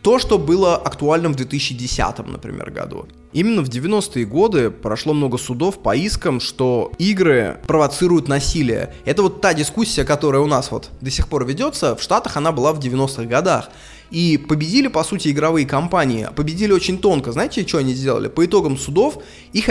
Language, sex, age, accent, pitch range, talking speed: Russian, male, 20-39, native, 135-195 Hz, 175 wpm